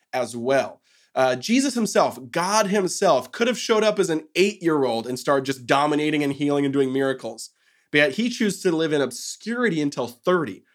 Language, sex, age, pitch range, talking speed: English, male, 20-39, 130-175 Hz, 185 wpm